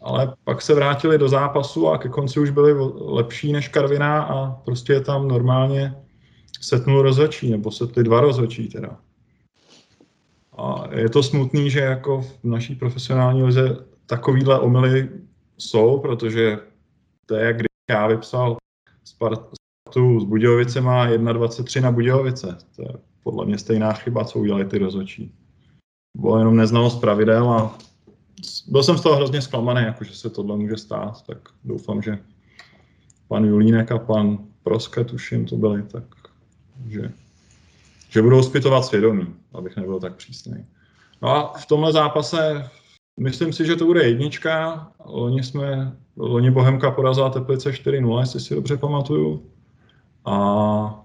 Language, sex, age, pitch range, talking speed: Czech, male, 20-39, 110-140 Hz, 140 wpm